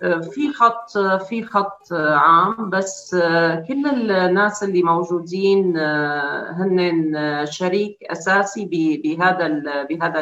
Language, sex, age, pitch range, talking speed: Arabic, female, 40-59, 160-200 Hz, 90 wpm